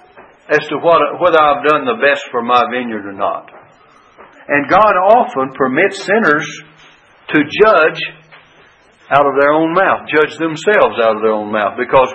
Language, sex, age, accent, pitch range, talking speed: English, male, 60-79, American, 150-195 Hz, 165 wpm